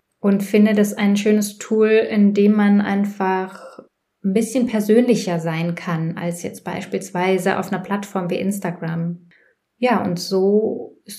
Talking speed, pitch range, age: 145 wpm, 180-215 Hz, 20-39